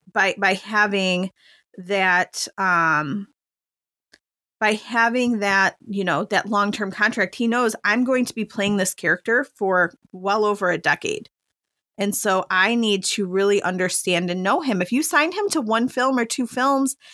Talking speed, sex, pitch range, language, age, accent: 170 wpm, female, 185-225 Hz, English, 30-49, American